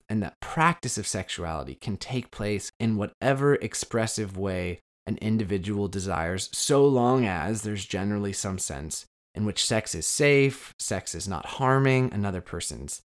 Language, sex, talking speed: English, male, 150 wpm